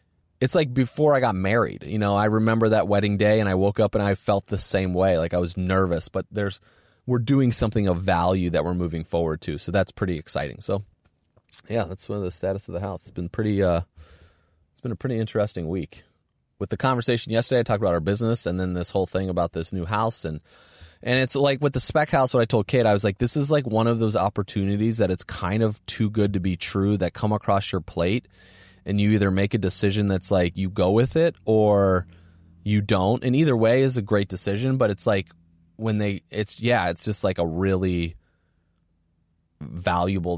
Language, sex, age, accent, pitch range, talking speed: English, male, 30-49, American, 90-120 Hz, 225 wpm